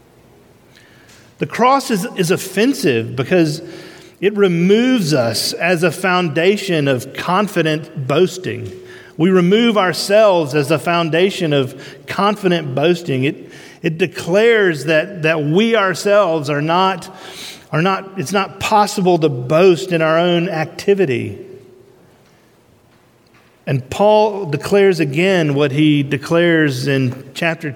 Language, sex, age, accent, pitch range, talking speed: English, male, 40-59, American, 135-185 Hz, 115 wpm